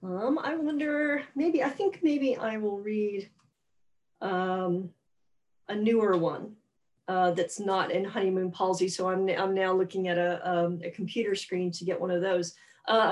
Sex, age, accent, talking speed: female, 40-59, American, 170 wpm